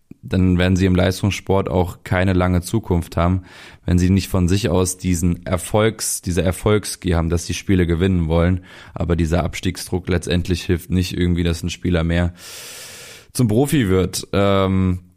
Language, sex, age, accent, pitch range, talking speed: German, male, 20-39, German, 90-100 Hz, 160 wpm